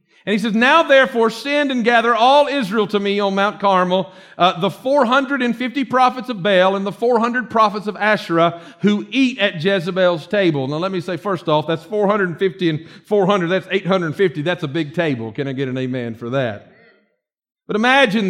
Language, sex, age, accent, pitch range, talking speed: English, male, 50-69, American, 190-255 Hz, 185 wpm